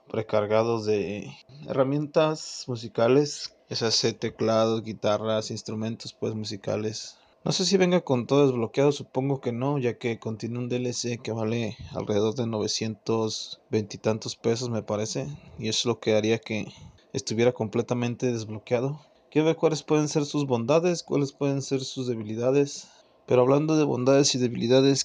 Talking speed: 150 wpm